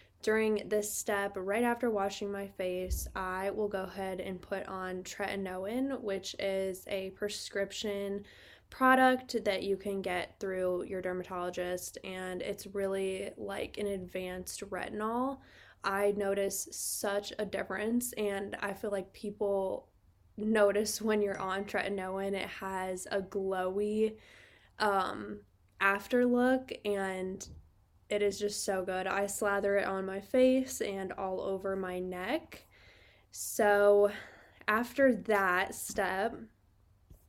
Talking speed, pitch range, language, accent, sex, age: 125 wpm, 190-210 Hz, English, American, female, 10-29